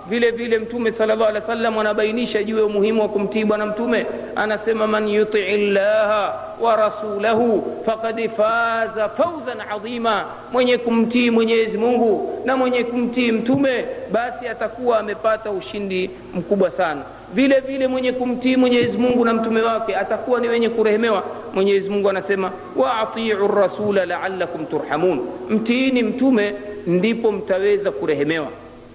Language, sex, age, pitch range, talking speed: Swahili, male, 50-69, 200-250 Hz, 80 wpm